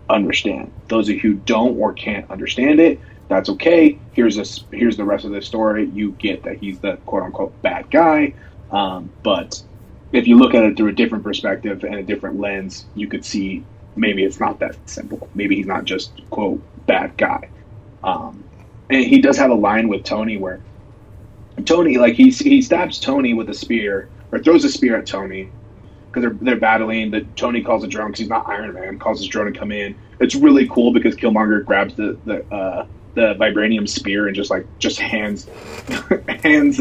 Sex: male